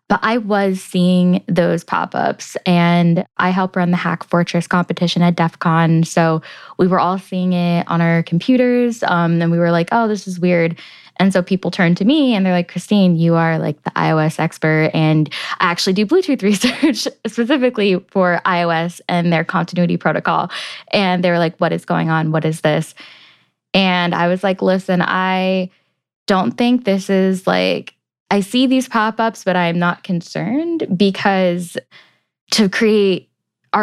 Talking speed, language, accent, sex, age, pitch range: 170 wpm, English, American, female, 10-29, 165-195 Hz